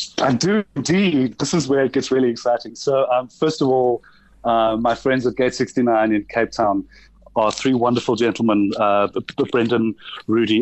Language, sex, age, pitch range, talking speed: English, male, 30-49, 115-135 Hz, 185 wpm